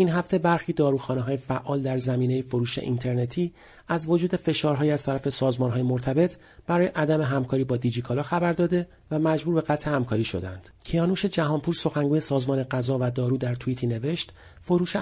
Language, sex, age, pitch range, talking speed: Persian, male, 40-59, 125-160 Hz, 170 wpm